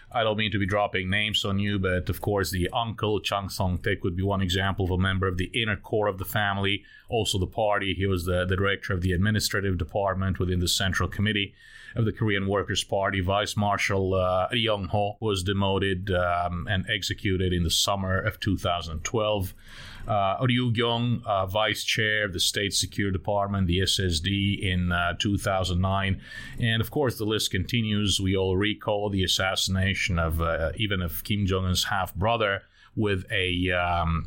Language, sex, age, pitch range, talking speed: English, male, 30-49, 90-105 Hz, 180 wpm